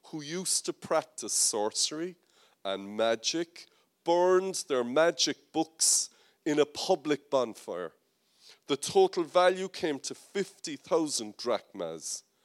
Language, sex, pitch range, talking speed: French, male, 120-195 Hz, 105 wpm